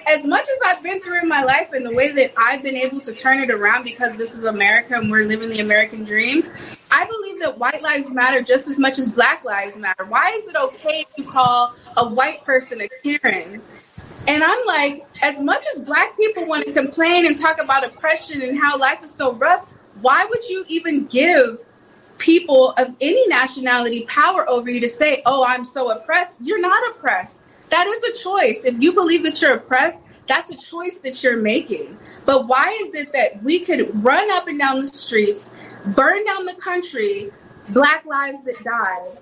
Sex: female